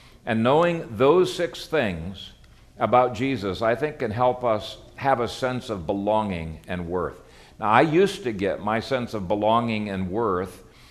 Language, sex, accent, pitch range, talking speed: English, male, American, 105-150 Hz, 165 wpm